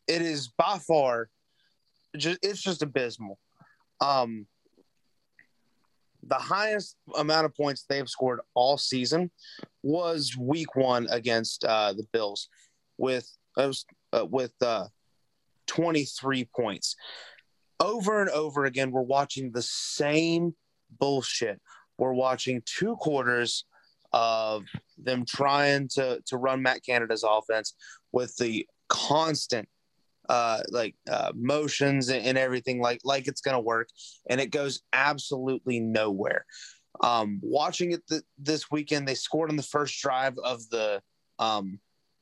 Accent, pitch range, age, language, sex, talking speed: American, 125-150 Hz, 30-49, English, male, 125 wpm